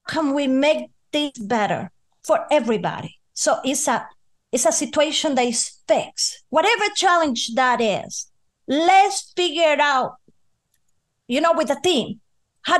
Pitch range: 240-330 Hz